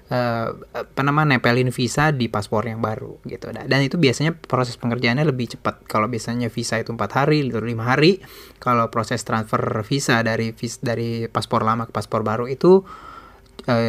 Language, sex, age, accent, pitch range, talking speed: Indonesian, male, 20-39, native, 115-135 Hz, 160 wpm